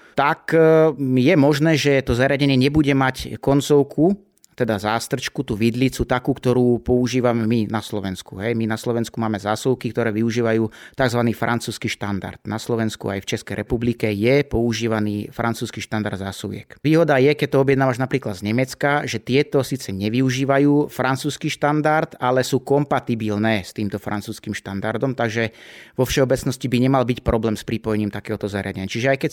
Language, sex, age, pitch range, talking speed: Slovak, male, 30-49, 110-140 Hz, 155 wpm